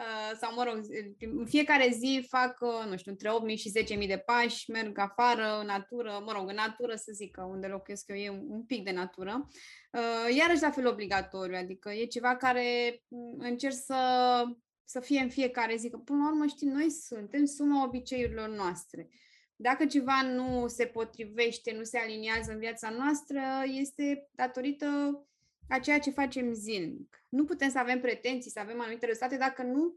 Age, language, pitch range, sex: 20-39, Romanian, 220-265 Hz, female